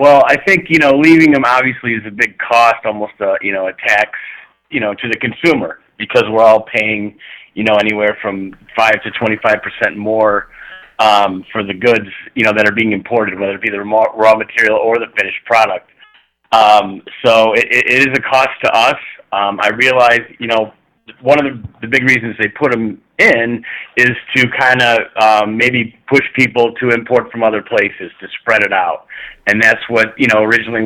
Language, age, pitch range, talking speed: English, 30-49, 105-125 Hz, 195 wpm